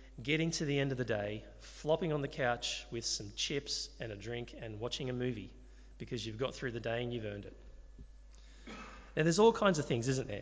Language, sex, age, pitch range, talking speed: English, male, 30-49, 115-155 Hz, 225 wpm